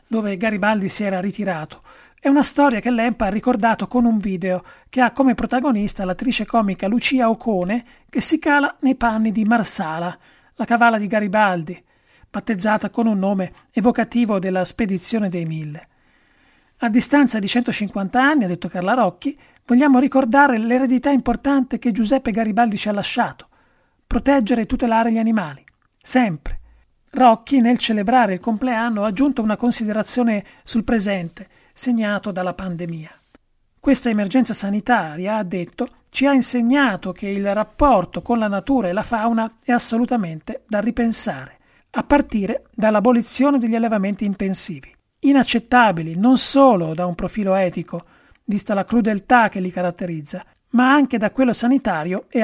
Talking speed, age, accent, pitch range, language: 145 wpm, 40-59, native, 200-245 Hz, Italian